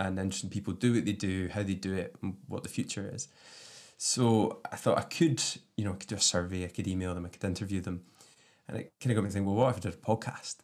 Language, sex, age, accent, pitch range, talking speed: English, male, 20-39, British, 95-110 Hz, 280 wpm